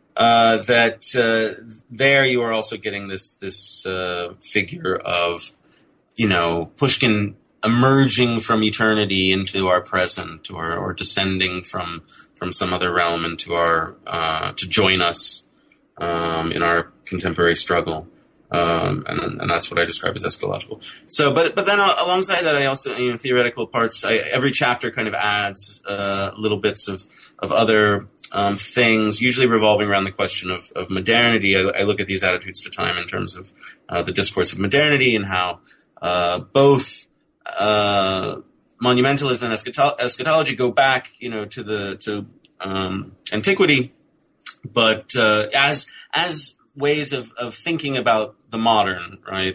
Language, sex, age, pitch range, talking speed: English, male, 20-39, 95-125 Hz, 160 wpm